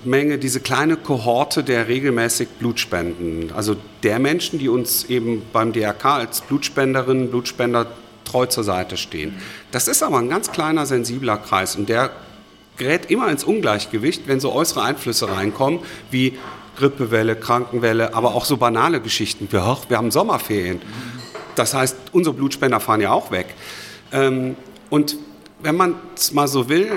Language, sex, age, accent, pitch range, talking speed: German, male, 40-59, German, 115-145 Hz, 155 wpm